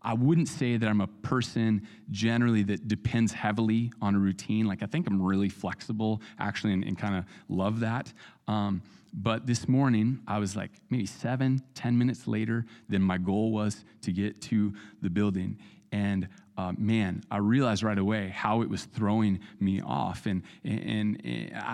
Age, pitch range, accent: 30-49, 100-120 Hz, American